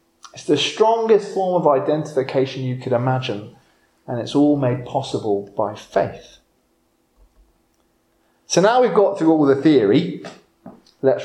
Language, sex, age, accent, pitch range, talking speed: English, male, 30-49, British, 125-195 Hz, 135 wpm